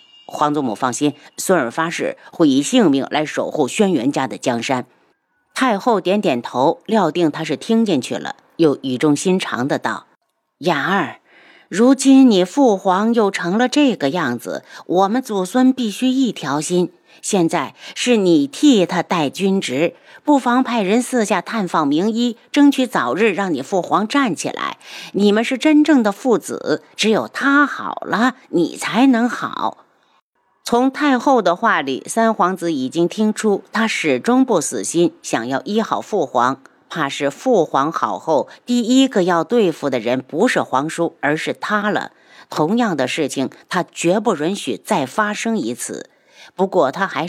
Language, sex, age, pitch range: Chinese, female, 50-69, 170-250 Hz